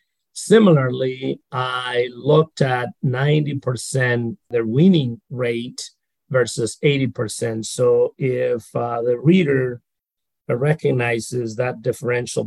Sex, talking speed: male, 85 wpm